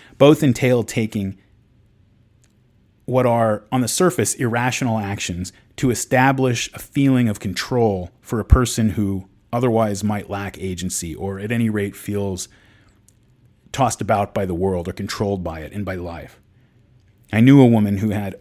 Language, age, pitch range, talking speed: English, 30-49, 100-115 Hz, 155 wpm